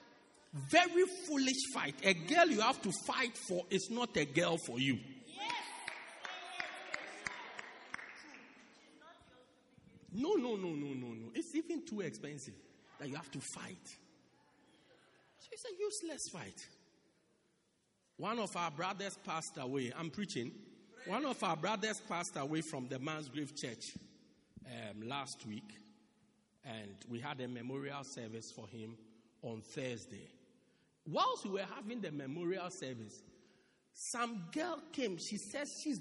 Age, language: 50-69, English